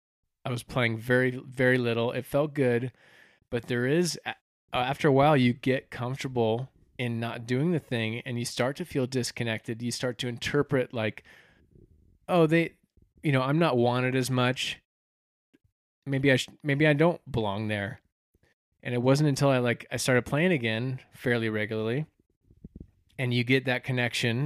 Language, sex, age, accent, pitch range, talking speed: English, male, 20-39, American, 110-135 Hz, 165 wpm